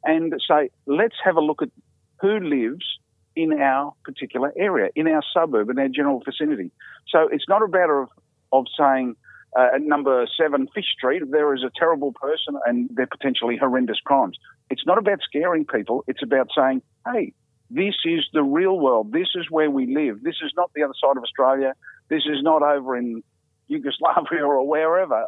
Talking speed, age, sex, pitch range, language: 190 wpm, 50-69, male, 130-180 Hz, English